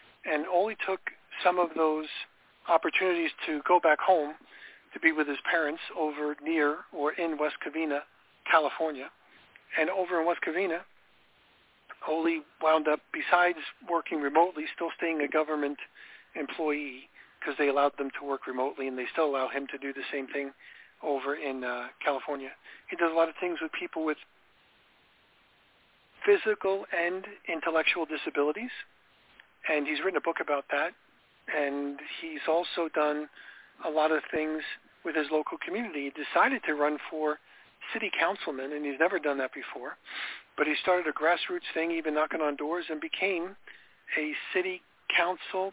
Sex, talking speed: male, 155 wpm